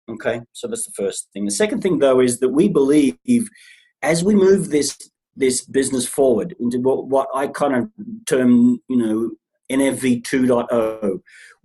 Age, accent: 40-59, Australian